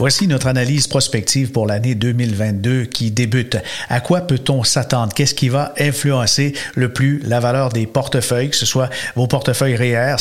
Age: 50-69